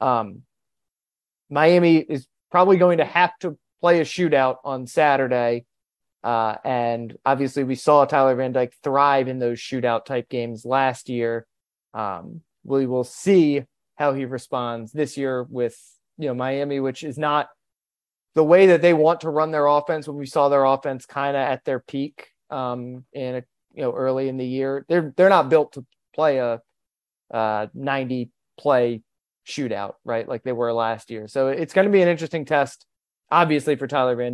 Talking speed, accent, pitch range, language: 180 wpm, American, 125-150 Hz, English